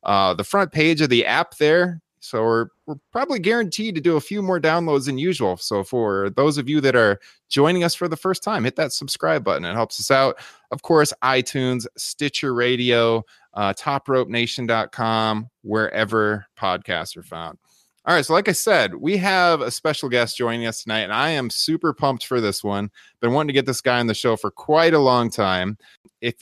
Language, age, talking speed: English, 20-39, 205 wpm